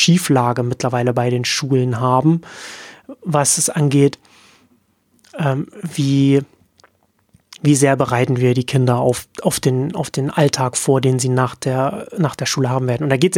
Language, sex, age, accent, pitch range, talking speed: German, male, 30-49, German, 135-165 Hz, 165 wpm